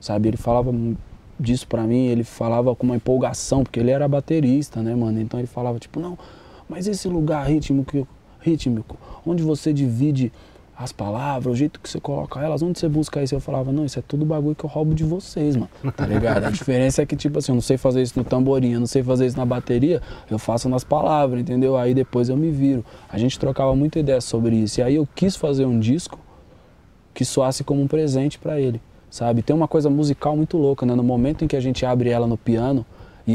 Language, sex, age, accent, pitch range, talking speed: Portuguese, male, 20-39, Brazilian, 120-150 Hz, 225 wpm